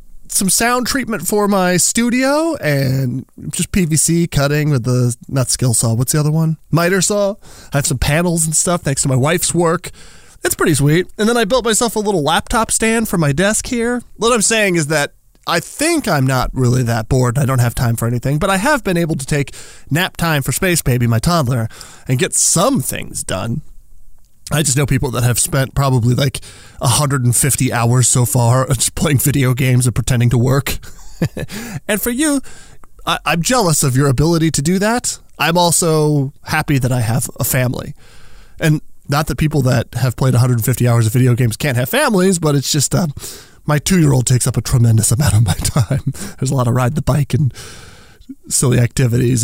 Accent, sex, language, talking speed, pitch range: American, male, English, 200 wpm, 125-170 Hz